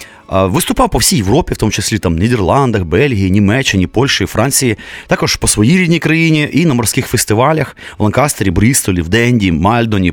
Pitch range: 95-130 Hz